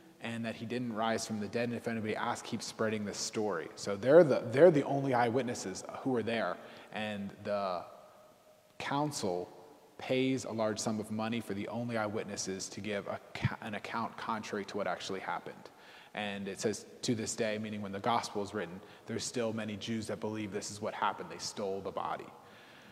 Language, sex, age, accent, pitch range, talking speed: English, male, 20-39, American, 110-145 Hz, 195 wpm